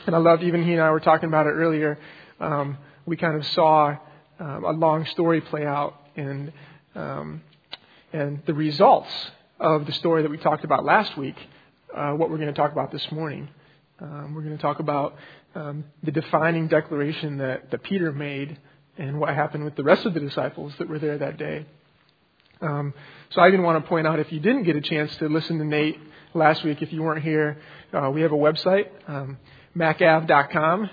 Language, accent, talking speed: English, American, 205 wpm